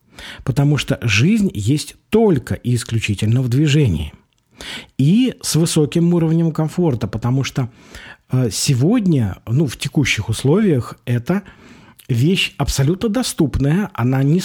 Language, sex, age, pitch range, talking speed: Russian, male, 50-69, 120-170 Hz, 110 wpm